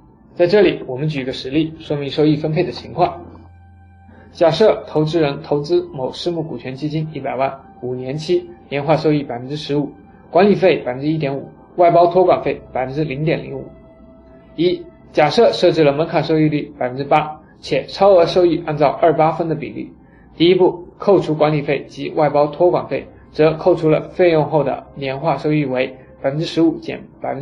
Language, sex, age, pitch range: Chinese, male, 20-39, 140-170 Hz